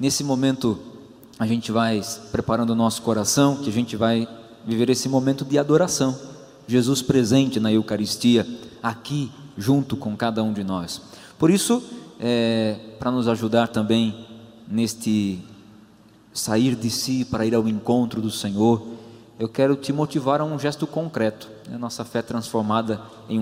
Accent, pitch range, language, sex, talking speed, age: Brazilian, 110-125 Hz, Portuguese, male, 150 wpm, 20-39